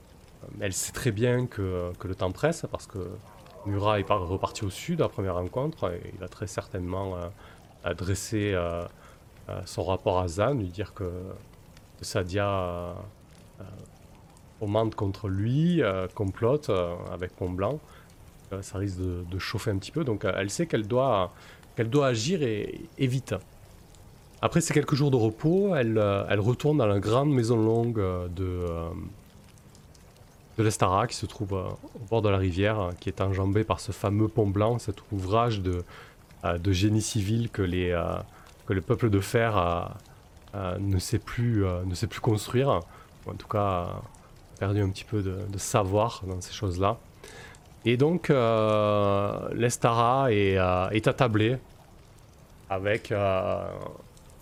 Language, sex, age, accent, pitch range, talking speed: French, male, 30-49, French, 95-115 Hz, 170 wpm